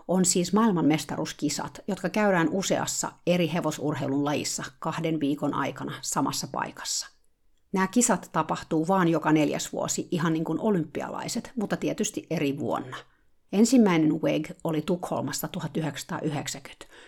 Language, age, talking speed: Finnish, 50-69, 120 wpm